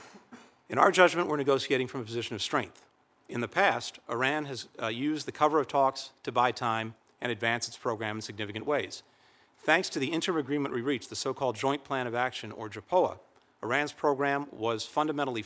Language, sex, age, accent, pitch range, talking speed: English, male, 40-59, American, 115-145 Hz, 195 wpm